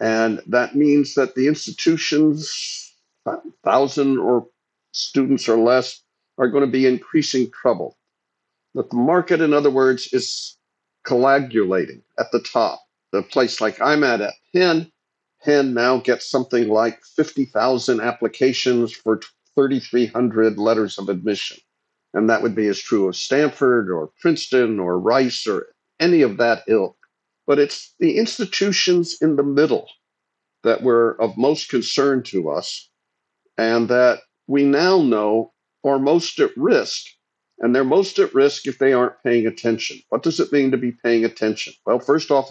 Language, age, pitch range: English, 50-69, 115-150 Hz